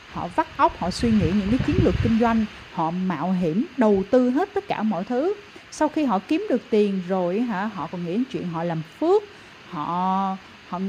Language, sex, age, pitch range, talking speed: Vietnamese, female, 30-49, 185-255 Hz, 220 wpm